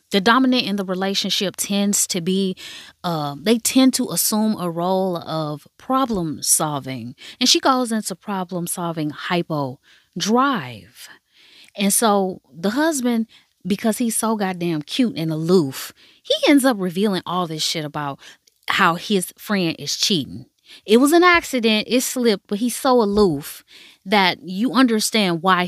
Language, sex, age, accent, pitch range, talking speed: English, female, 20-39, American, 185-260 Hz, 150 wpm